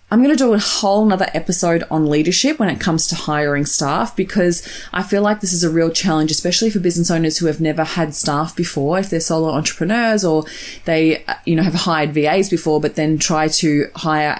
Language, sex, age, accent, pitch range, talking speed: English, female, 20-39, Australian, 155-195 Hz, 215 wpm